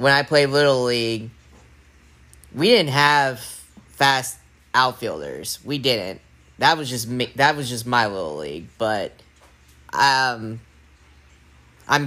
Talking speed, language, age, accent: 125 wpm, English, 10-29, American